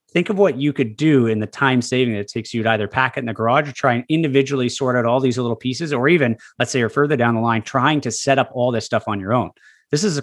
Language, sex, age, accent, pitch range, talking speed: English, male, 30-49, American, 115-140 Hz, 310 wpm